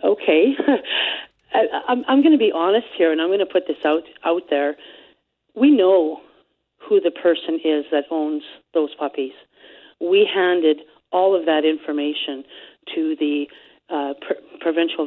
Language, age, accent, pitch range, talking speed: English, 40-59, American, 150-170 Hz, 155 wpm